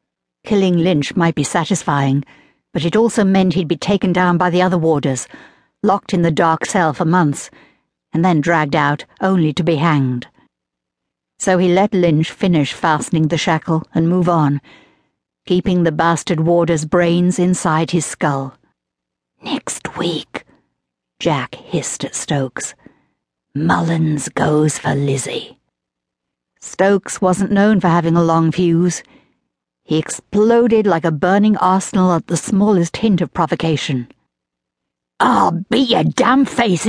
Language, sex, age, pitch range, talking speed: English, female, 60-79, 155-195 Hz, 140 wpm